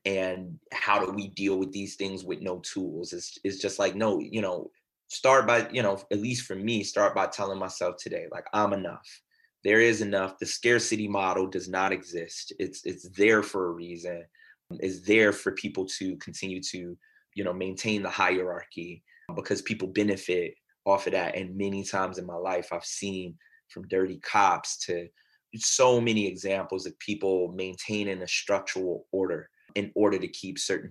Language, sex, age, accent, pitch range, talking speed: English, male, 30-49, American, 95-105 Hz, 180 wpm